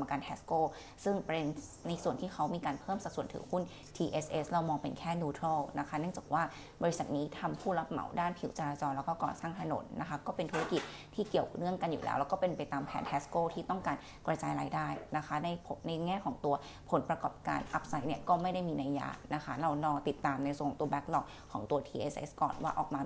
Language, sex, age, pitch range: Thai, female, 20-39, 140-170 Hz